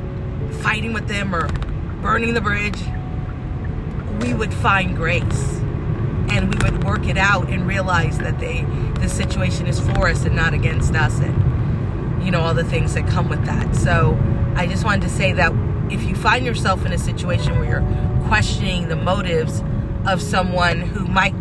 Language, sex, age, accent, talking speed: English, female, 40-59, American, 175 wpm